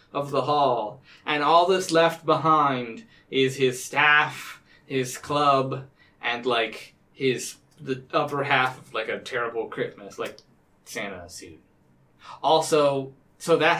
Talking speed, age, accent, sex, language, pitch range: 130 wpm, 20-39, American, male, English, 140-175 Hz